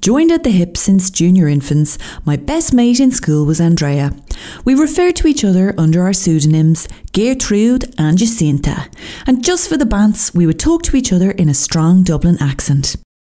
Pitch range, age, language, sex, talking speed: 155-230 Hz, 30-49, English, female, 185 wpm